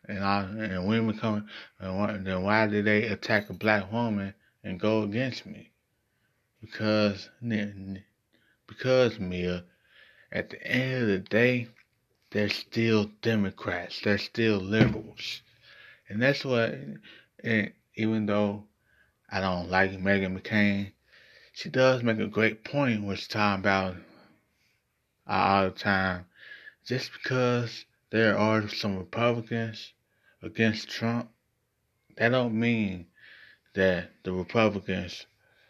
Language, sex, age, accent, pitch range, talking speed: English, male, 20-39, American, 95-110 Hz, 125 wpm